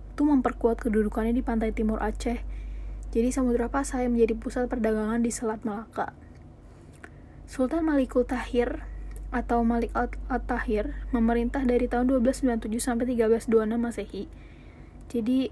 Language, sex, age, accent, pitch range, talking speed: Indonesian, female, 20-39, native, 230-255 Hz, 105 wpm